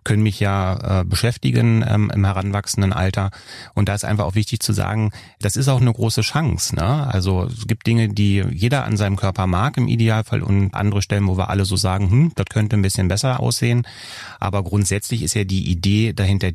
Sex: male